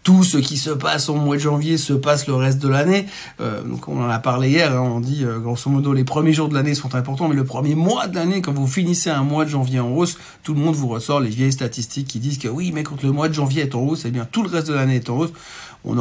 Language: French